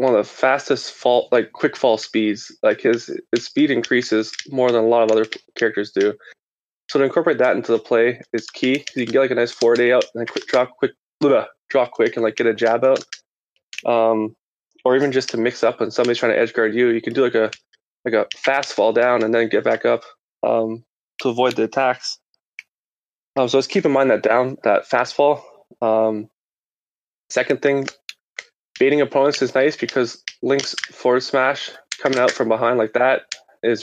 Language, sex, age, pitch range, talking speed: English, male, 20-39, 115-135 Hz, 205 wpm